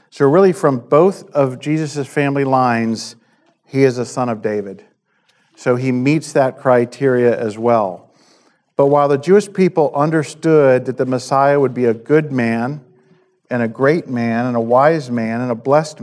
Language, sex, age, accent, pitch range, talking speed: English, male, 50-69, American, 120-155 Hz, 170 wpm